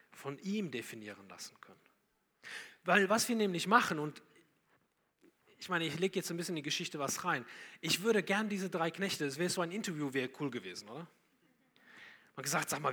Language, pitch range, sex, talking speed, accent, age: German, 135-190 Hz, male, 195 wpm, German, 40-59